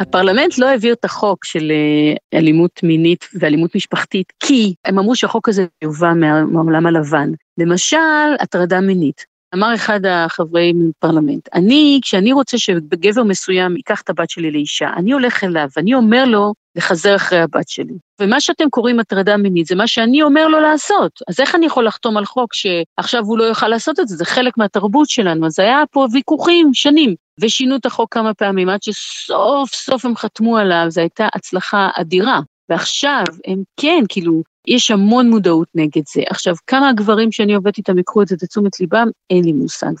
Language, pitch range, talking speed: Hebrew, 170-240 Hz, 175 wpm